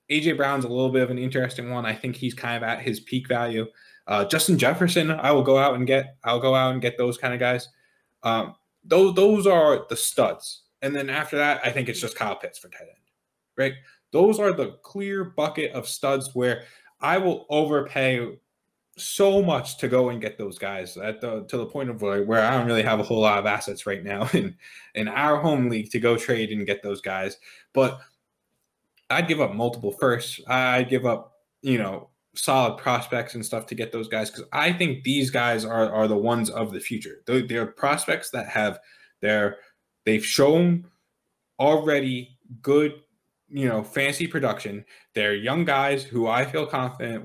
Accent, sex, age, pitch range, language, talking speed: American, male, 20-39, 115-140 Hz, English, 200 wpm